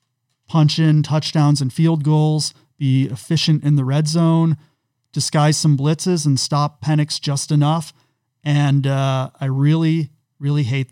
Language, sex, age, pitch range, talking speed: English, male, 30-49, 130-155 Hz, 145 wpm